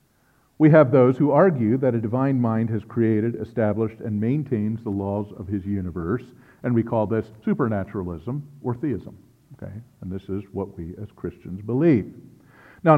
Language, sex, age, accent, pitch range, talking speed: English, male, 50-69, American, 105-140 Hz, 165 wpm